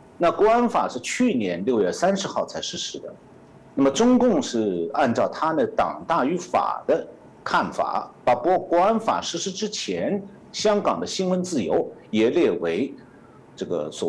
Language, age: Chinese, 60-79